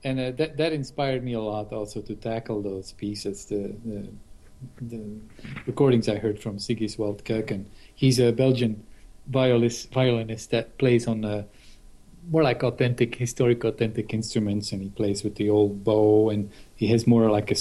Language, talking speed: English, 175 wpm